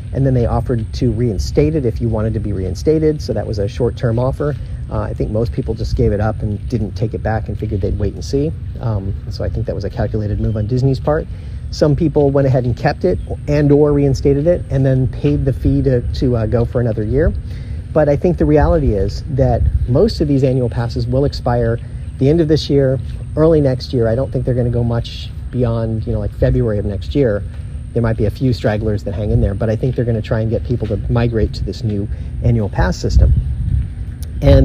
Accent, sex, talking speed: American, male, 245 wpm